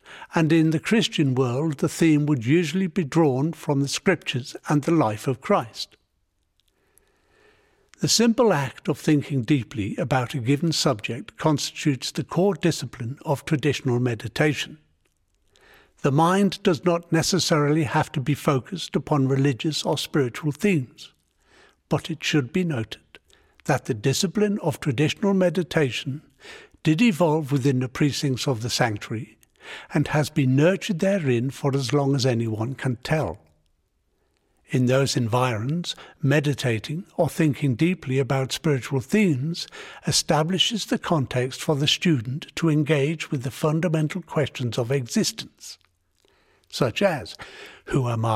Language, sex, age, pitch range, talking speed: English, male, 60-79, 125-165 Hz, 135 wpm